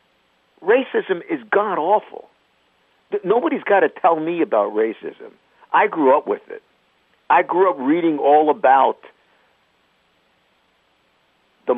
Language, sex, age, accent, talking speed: English, male, 50-69, American, 110 wpm